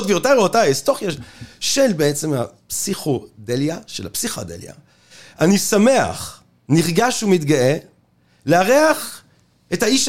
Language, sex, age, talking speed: Hebrew, male, 30-49, 95 wpm